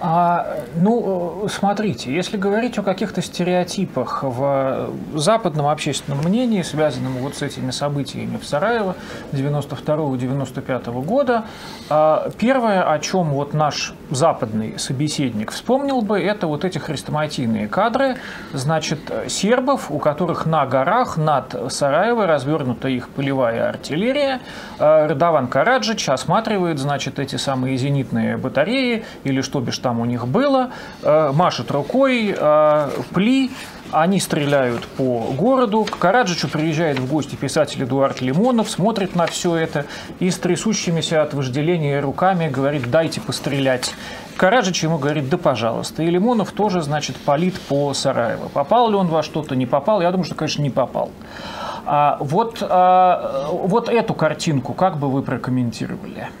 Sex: male